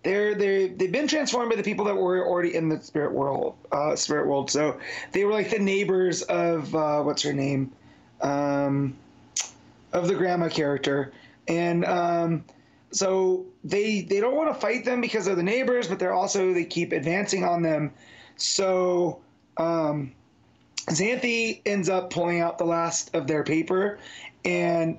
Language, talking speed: English, 165 wpm